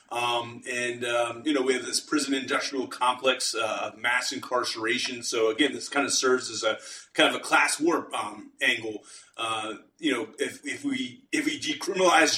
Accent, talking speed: American, 185 wpm